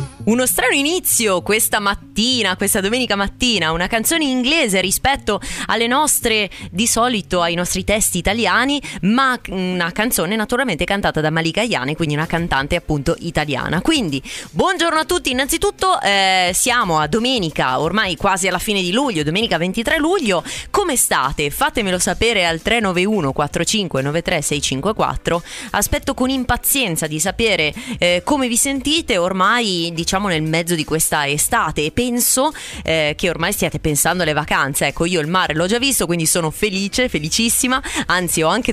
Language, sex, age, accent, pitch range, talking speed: Italian, female, 20-39, native, 165-235 Hz, 155 wpm